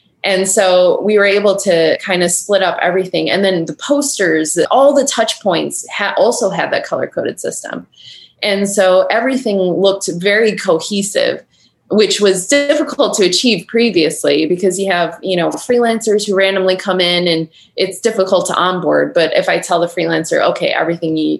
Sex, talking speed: female, 170 wpm